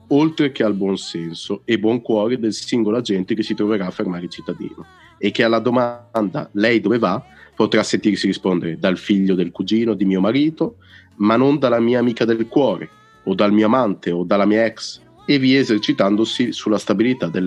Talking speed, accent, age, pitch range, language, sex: 190 wpm, native, 30-49, 95-120 Hz, Italian, male